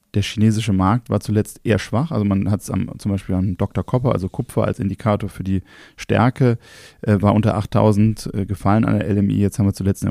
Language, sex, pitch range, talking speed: German, male, 100-115 Hz, 220 wpm